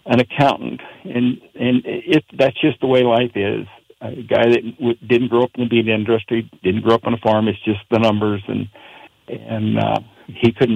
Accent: American